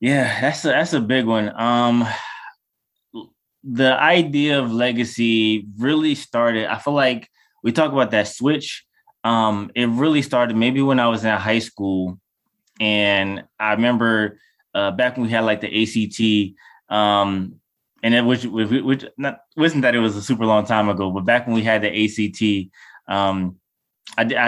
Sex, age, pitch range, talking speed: male, 20-39, 105-130 Hz, 160 wpm